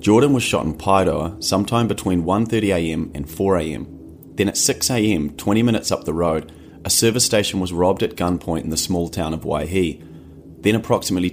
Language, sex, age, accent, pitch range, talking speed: English, male, 30-49, Australian, 80-105 Hz, 175 wpm